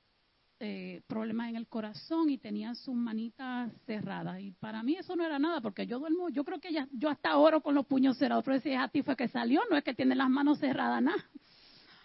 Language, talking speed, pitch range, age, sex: Spanish, 235 wpm, 225-295 Hz, 40-59, female